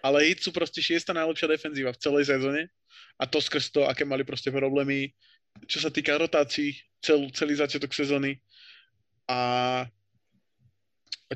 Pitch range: 130-145 Hz